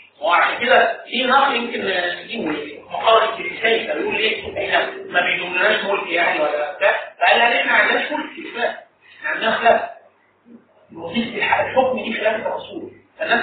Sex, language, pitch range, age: male, Arabic, 220-300 Hz, 50-69